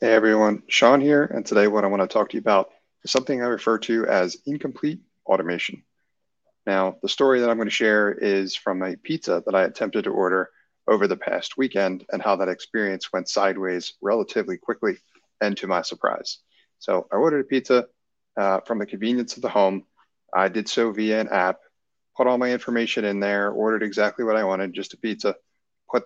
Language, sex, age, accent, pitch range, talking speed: English, male, 30-49, American, 95-115 Hz, 205 wpm